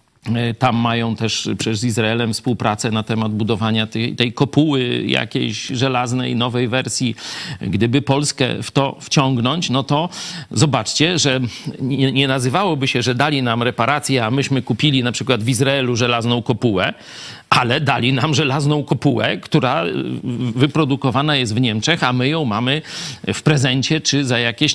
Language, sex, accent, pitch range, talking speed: Polish, male, native, 110-145 Hz, 150 wpm